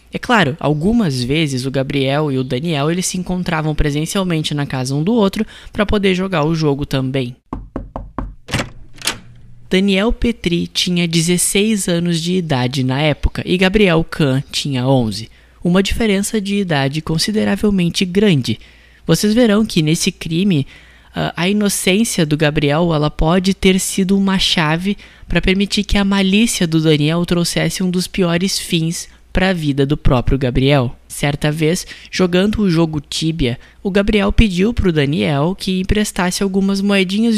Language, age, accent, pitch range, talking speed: Portuguese, 20-39, Brazilian, 150-195 Hz, 145 wpm